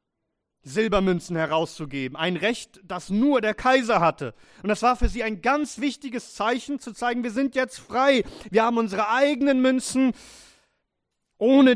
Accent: German